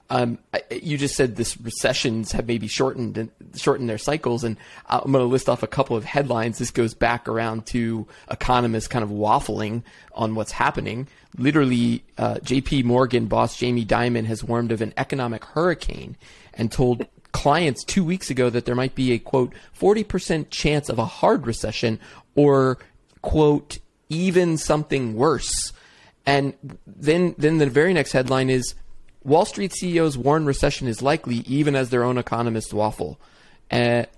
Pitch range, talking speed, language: 120-140 Hz, 165 wpm, English